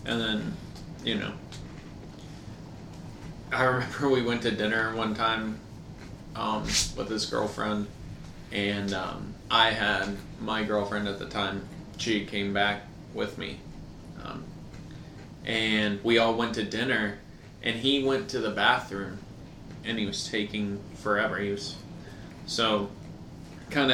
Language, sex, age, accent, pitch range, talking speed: English, male, 20-39, American, 105-115 Hz, 130 wpm